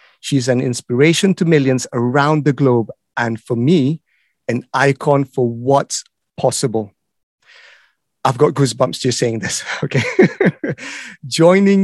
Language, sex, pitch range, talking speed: English, male, 125-150 Hz, 120 wpm